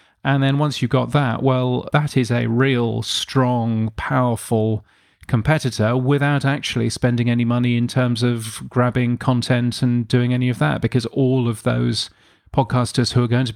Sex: male